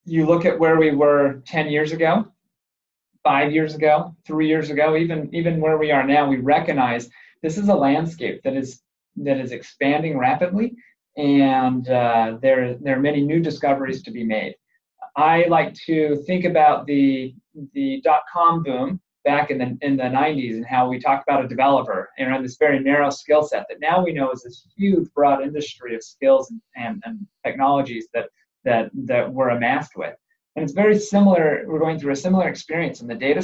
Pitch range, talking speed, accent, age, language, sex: 135-175 Hz, 190 wpm, American, 30-49, English, male